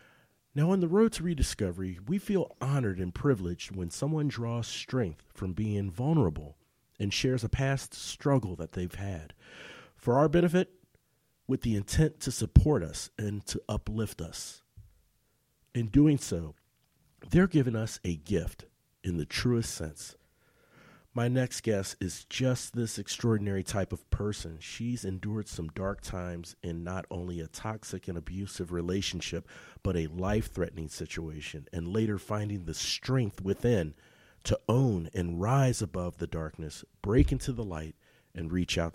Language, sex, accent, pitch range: English, male, American, 90-130 Hz